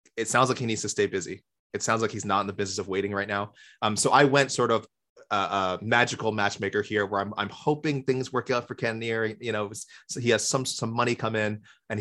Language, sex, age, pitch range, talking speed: English, male, 20-39, 100-120 Hz, 260 wpm